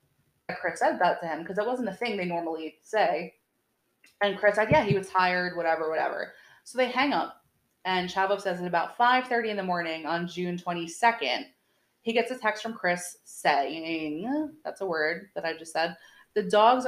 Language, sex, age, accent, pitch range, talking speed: English, female, 20-39, American, 175-230 Hz, 195 wpm